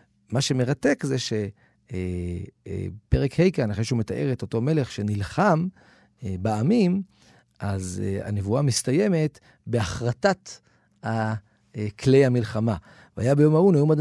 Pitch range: 110-150 Hz